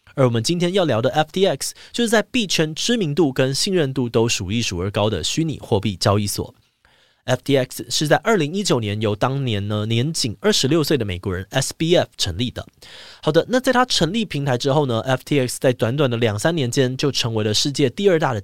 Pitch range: 110-160 Hz